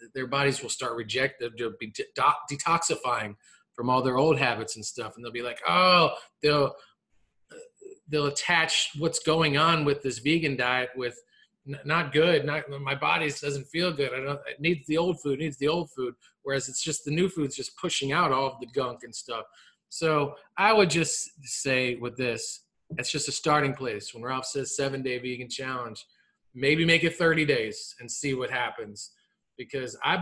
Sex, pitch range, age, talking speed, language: male, 135-180 Hz, 30-49, 195 wpm, English